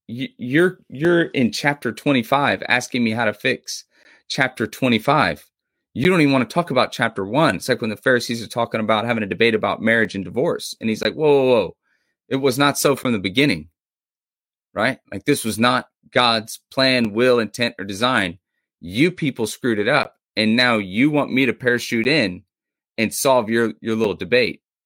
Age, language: 30-49, English